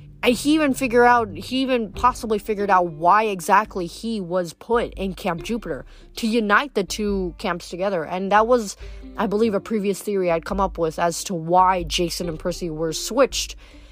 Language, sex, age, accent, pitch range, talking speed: English, female, 20-39, American, 175-225 Hz, 190 wpm